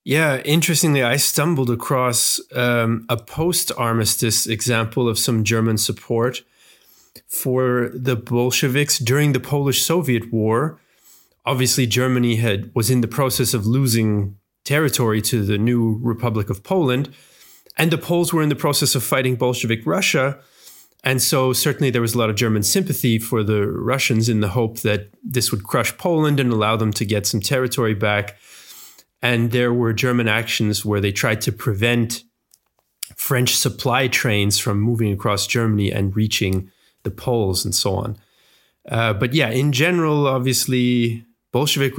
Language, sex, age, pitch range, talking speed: English, male, 30-49, 110-130 Hz, 155 wpm